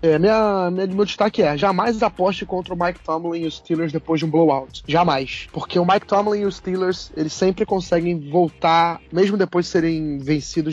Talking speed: 200 wpm